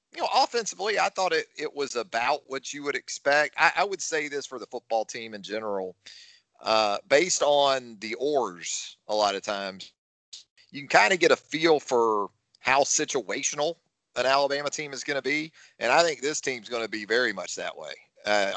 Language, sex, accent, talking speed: English, male, American, 205 wpm